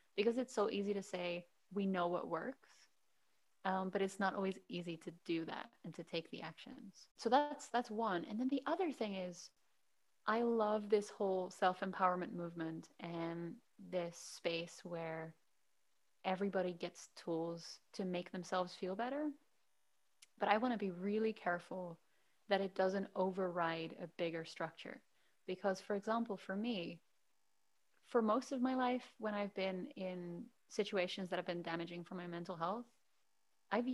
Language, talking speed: English, 155 wpm